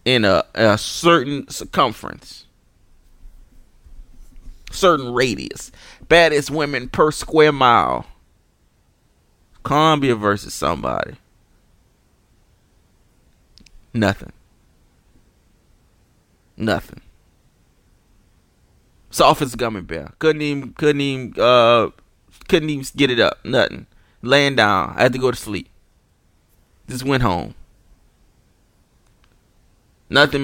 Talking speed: 90 wpm